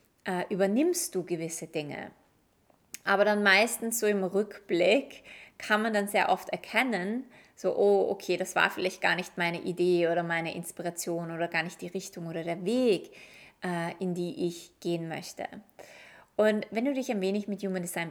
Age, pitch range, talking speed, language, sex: 20-39, 175-220 Hz, 170 wpm, German, female